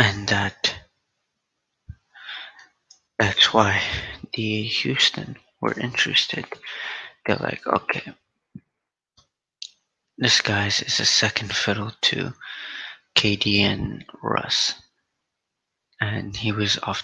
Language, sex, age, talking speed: English, male, 20-39, 85 wpm